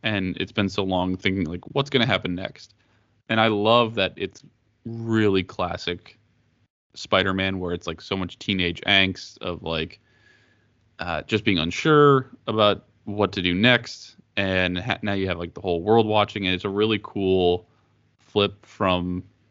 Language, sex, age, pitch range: English, male, 20-39, 90-110 Hz